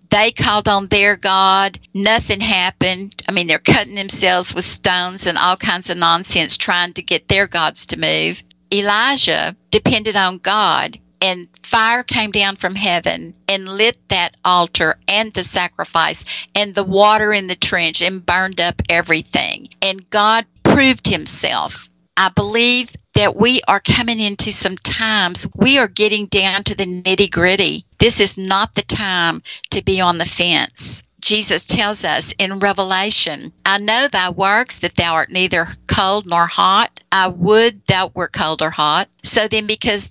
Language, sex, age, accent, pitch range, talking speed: English, female, 60-79, American, 180-210 Hz, 165 wpm